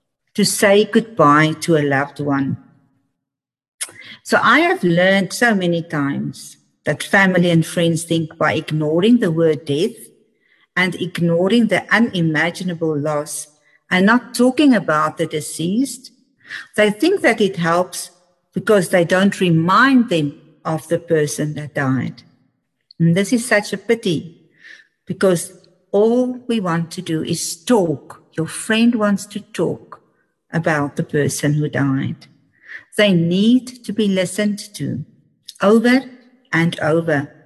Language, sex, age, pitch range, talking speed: English, female, 50-69, 155-205 Hz, 135 wpm